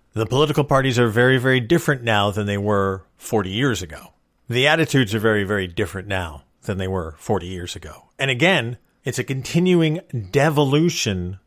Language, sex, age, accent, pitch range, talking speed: English, male, 40-59, American, 110-155 Hz, 175 wpm